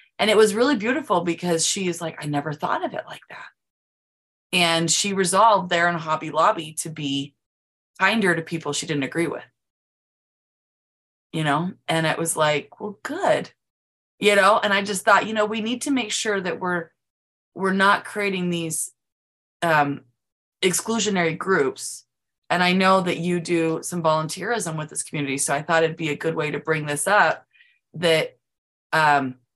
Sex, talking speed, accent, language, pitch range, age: female, 175 wpm, American, English, 145-185 Hz, 20-39